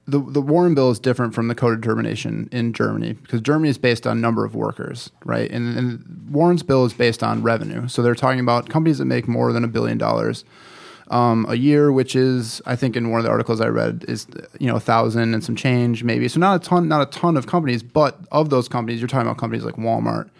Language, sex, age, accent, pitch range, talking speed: English, male, 20-39, American, 115-140 Hz, 240 wpm